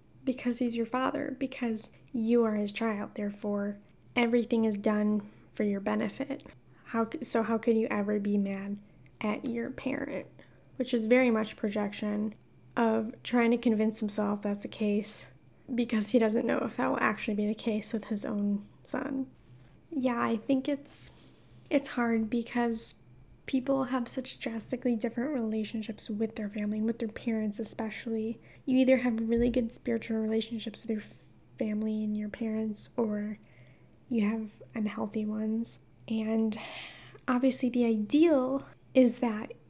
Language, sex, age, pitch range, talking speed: English, female, 10-29, 215-245 Hz, 150 wpm